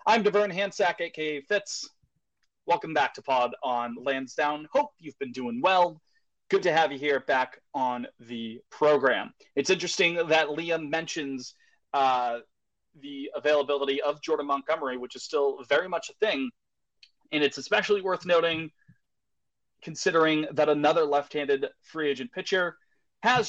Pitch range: 140-180 Hz